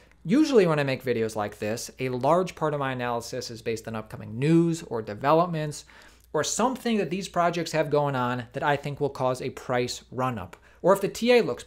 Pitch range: 140-185 Hz